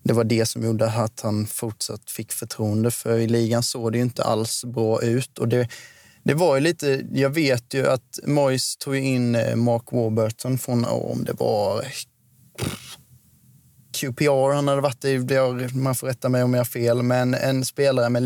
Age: 20-39